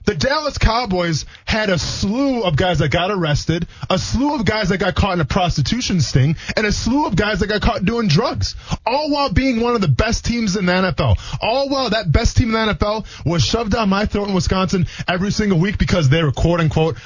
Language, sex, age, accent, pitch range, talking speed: English, male, 20-39, American, 135-210 Hz, 230 wpm